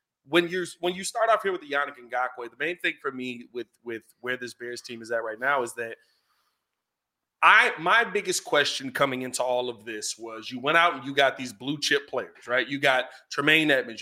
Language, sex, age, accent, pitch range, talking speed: English, male, 30-49, American, 140-215 Hz, 230 wpm